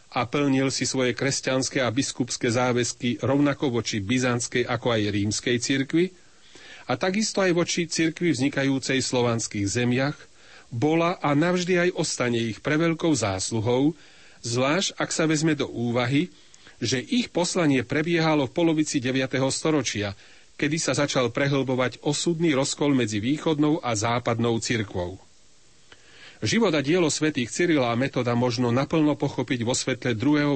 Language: Slovak